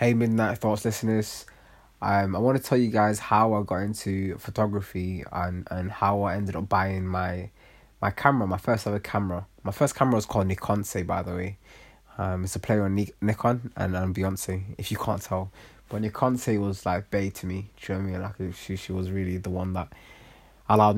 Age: 20-39